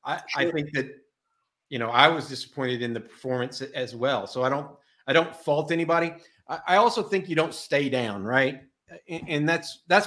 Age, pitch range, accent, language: 50-69, 120-145 Hz, American, English